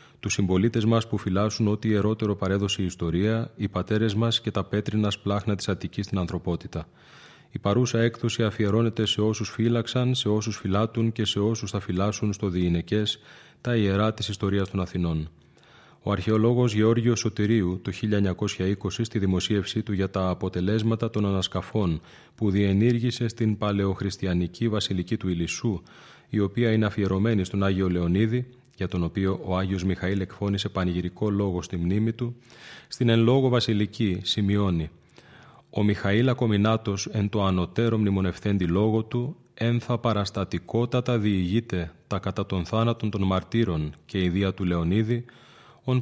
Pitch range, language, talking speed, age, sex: 95-115 Hz, Greek, 150 wpm, 30-49, male